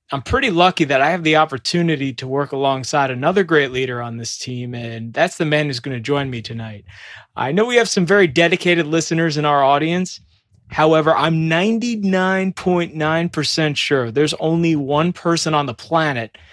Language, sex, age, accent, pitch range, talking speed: English, male, 20-39, American, 140-180 Hz, 180 wpm